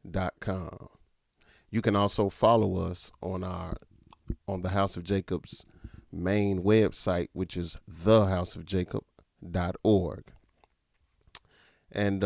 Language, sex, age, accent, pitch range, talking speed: English, male, 40-59, American, 90-105 Hz, 100 wpm